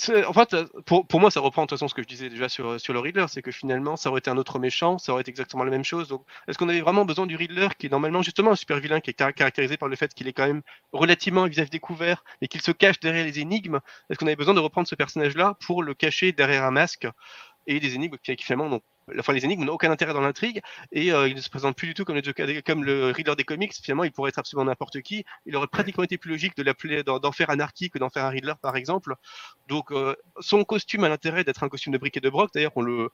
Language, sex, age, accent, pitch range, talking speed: French, male, 30-49, French, 135-175 Hz, 285 wpm